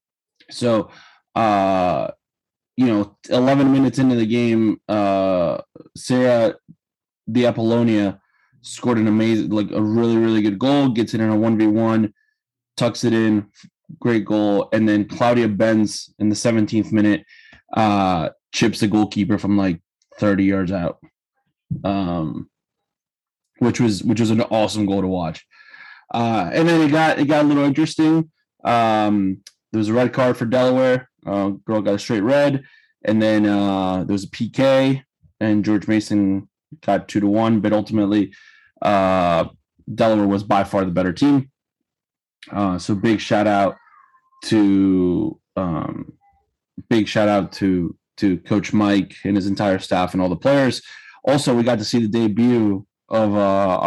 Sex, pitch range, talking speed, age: male, 100-120 Hz, 155 wpm, 20-39